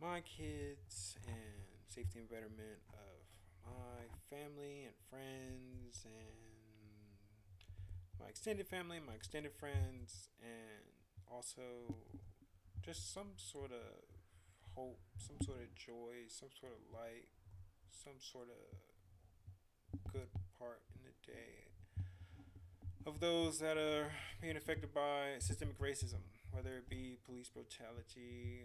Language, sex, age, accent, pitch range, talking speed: English, male, 20-39, American, 95-120 Hz, 115 wpm